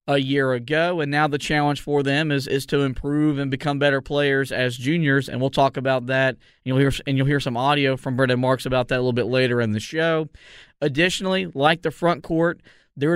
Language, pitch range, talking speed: English, 135-150 Hz, 230 wpm